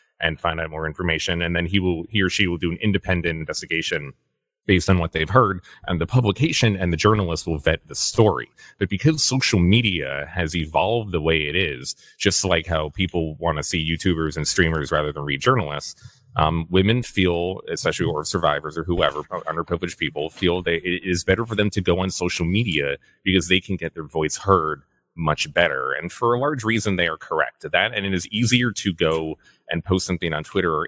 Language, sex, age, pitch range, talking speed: English, male, 30-49, 80-100 Hz, 210 wpm